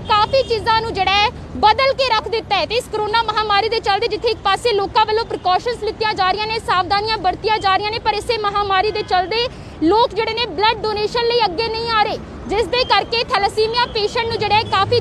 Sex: female